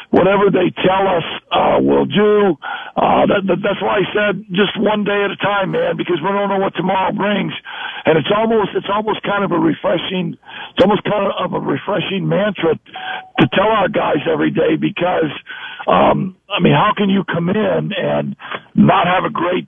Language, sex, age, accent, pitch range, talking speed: English, male, 60-79, American, 190-210 Hz, 190 wpm